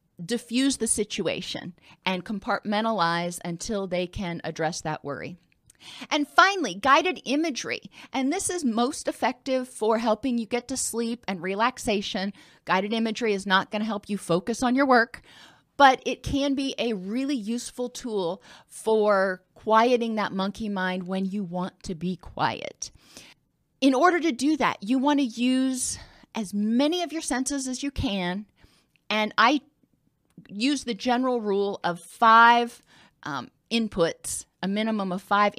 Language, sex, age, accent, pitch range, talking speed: English, female, 30-49, American, 190-250 Hz, 150 wpm